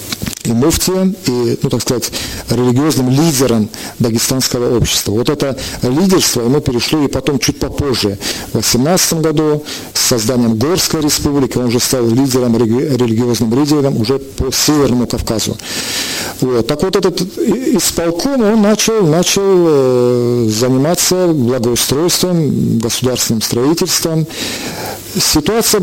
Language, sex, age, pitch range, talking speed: Russian, male, 50-69, 120-155 Hz, 115 wpm